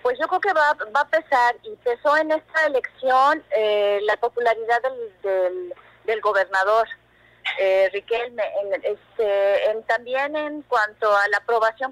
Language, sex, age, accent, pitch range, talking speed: Spanish, female, 30-49, Mexican, 190-245 Hz, 155 wpm